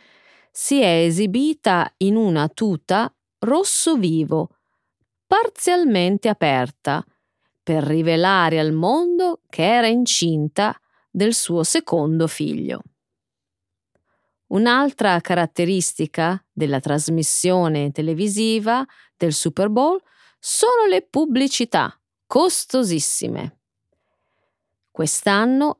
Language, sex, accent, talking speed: Italian, female, native, 80 wpm